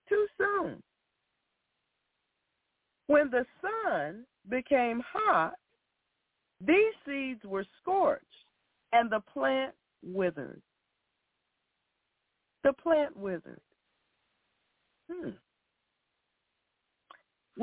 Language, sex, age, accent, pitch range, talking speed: English, female, 60-79, American, 200-315 Hz, 65 wpm